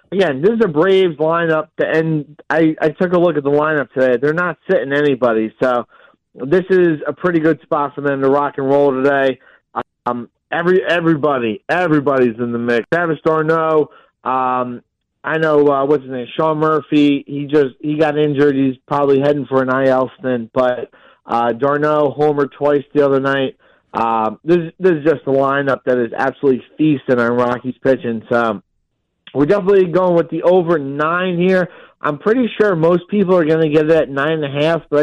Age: 40-59